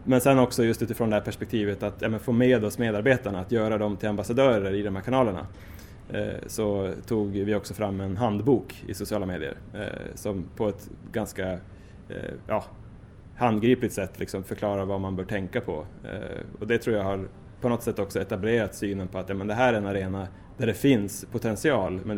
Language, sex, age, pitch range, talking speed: Swedish, male, 20-39, 100-115 Hz, 205 wpm